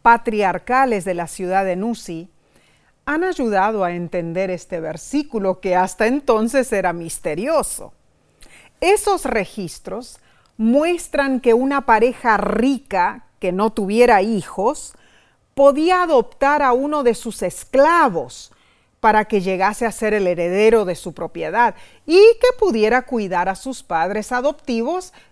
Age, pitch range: 40-59, 190-250 Hz